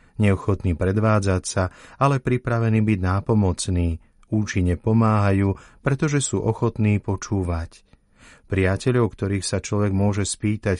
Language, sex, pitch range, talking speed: Slovak, male, 95-110 Hz, 105 wpm